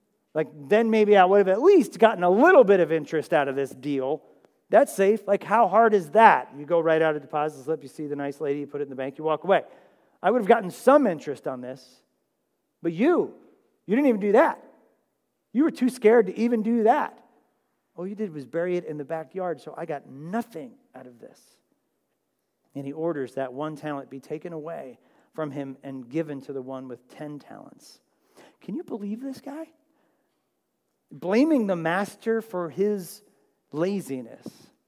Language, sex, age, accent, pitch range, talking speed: English, male, 40-59, American, 150-220 Hz, 200 wpm